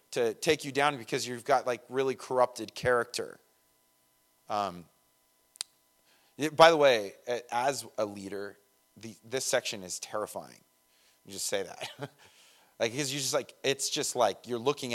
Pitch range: 120-150 Hz